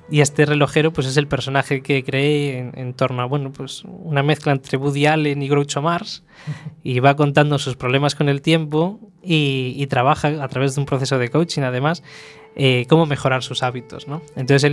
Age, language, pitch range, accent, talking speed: 20-39, Spanish, 130-150 Hz, Spanish, 205 wpm